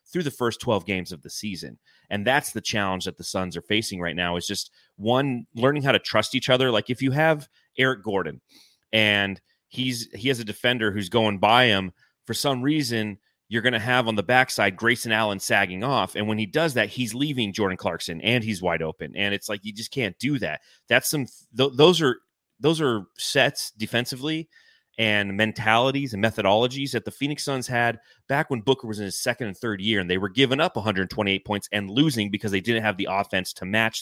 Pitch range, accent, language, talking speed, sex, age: 100-130 Hz, American, English, 220 wpm, male, 30-49